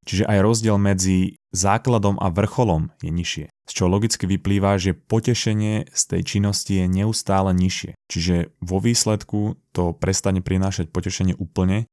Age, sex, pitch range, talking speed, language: 20-39, male, 85-100 Hz, 145 wpm, Slovak